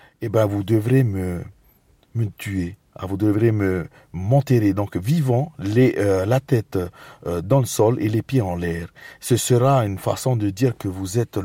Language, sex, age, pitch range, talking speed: French, male, 40-59, 105-140 Hz, 190 wpm